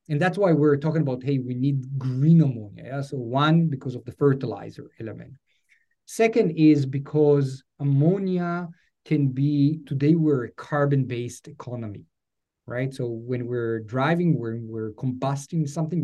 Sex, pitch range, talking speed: male, 130-155 Hz, 140 wpm